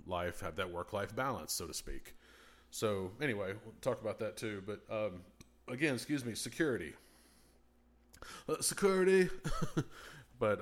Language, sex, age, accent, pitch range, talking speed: English, male, 30-49, American, 95-120 Hz, 130 wpm